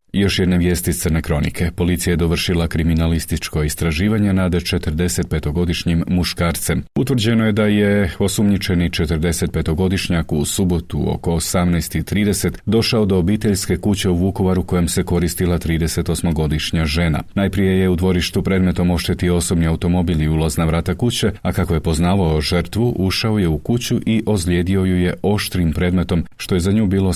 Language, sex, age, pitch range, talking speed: Croatian, male, 40-59, 85-115 Hz, 145 wpm